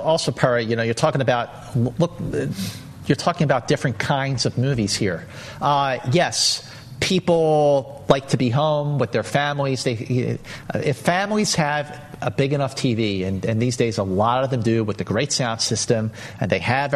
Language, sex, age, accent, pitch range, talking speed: English, male, 40-59, American, 120-145 Hz, 180 wpm